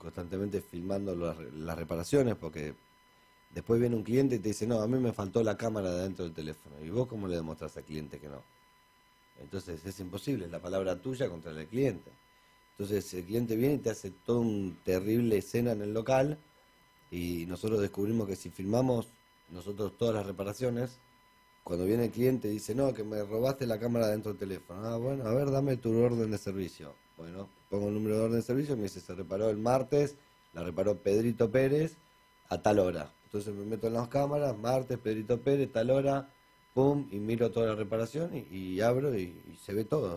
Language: Spanish